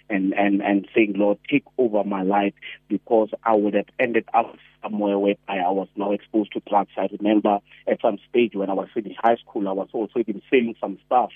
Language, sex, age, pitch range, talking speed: English, male, 30-49, 100-115 Hz, 220 wpm